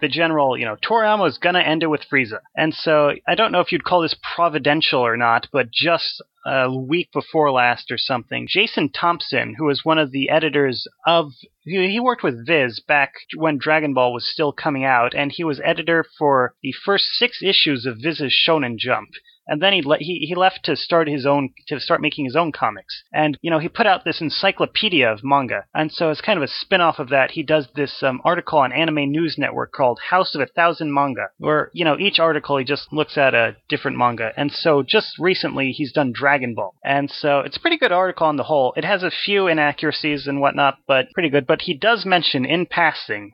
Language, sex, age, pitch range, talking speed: English, male, 30-49, 140-170 Hz, 225 wpm